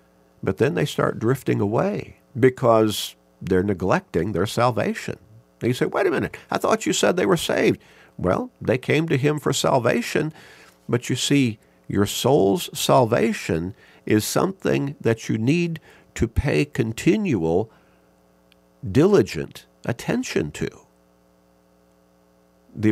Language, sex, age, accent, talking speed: English, male, 50-69, American, 125 wpm